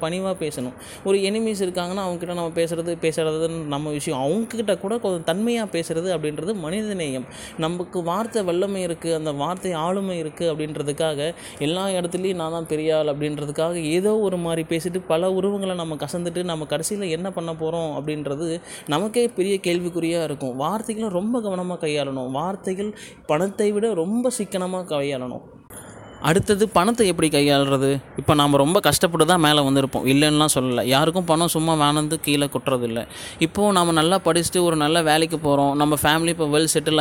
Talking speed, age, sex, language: 150 wpm, 20-39, male, Tamil